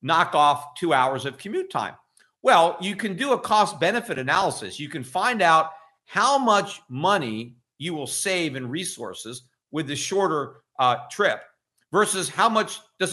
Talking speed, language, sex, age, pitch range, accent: 165 wpm, English, male, 50-69, 145-185 Hz, American